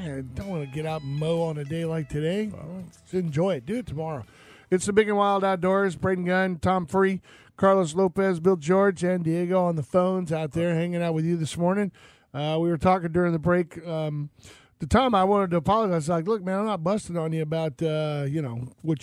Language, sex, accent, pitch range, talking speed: English, male, American, 155-185 Hz, 240 wpm